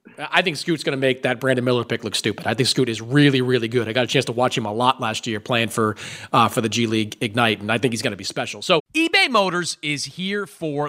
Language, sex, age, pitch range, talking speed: English, male, 30-49, 120-175 Hz, 285 wpm